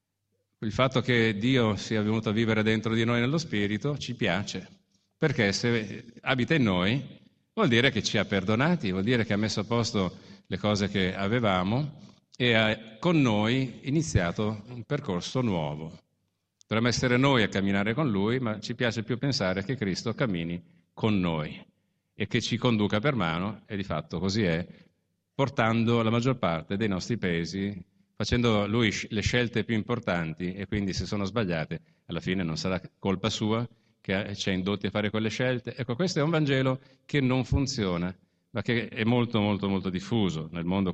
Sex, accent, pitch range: male, native, 95-120 Hz